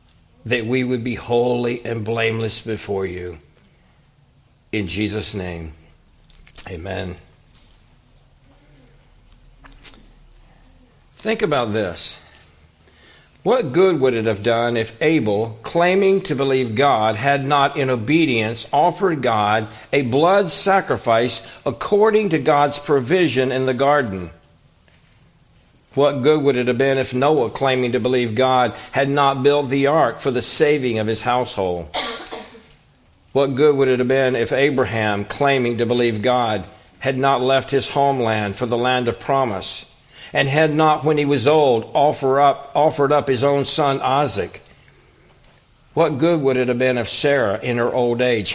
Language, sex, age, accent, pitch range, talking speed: English, male, 50-69, American, 110-140 Hz, 145 wpm